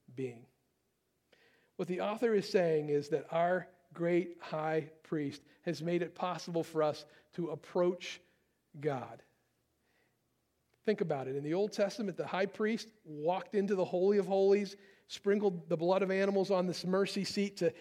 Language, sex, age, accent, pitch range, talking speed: English, male, 50-69, American, 170-205 Hz, 160 wpm